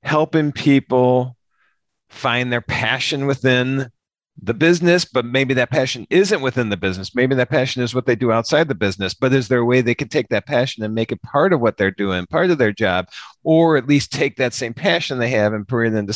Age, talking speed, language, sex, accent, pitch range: 50-69, 225 wpm, English, male, American, 100-135 Hz